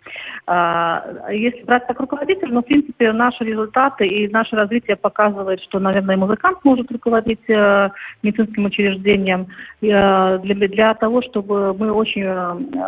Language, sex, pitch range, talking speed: Russian, female, 185-225 Hz, 120 wpm